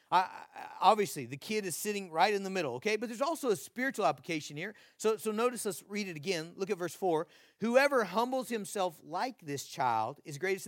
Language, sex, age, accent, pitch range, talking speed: English, male, 40-59, American, 160-205 Hz, 215 wpm